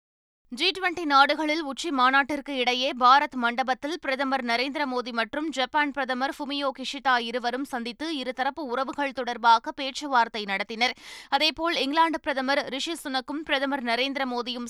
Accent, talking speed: native, 120 wpm